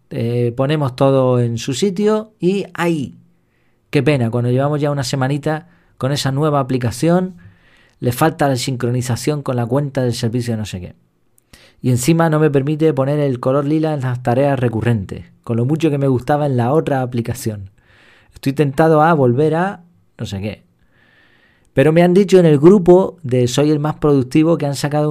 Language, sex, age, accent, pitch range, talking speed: Spanish, male, 40-59, Argentinian, 120-155 Hz, 185 wpm